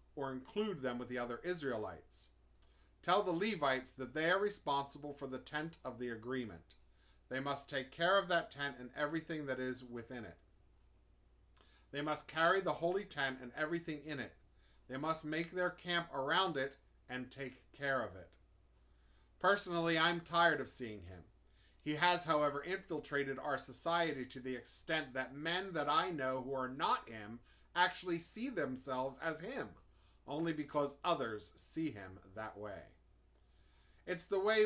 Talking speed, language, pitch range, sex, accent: 165 wpm, English, 120-160 Hz, male, American